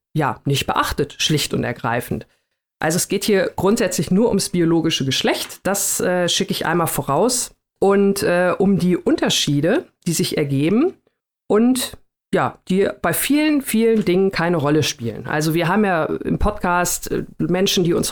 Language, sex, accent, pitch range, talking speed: German, female, German, 170-200 Hz, 160 wpm